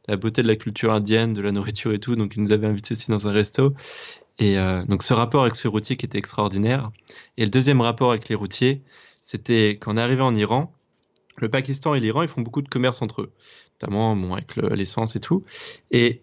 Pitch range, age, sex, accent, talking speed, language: 105-130 Hz, 20-39, male, French, 230 wpm, French